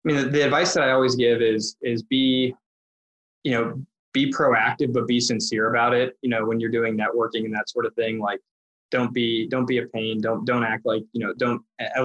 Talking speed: 235 wpm